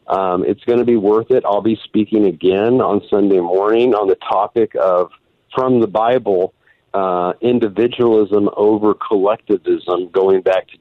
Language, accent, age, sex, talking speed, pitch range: English, American, 50-69, male, 155 wpm, 100-120 Hz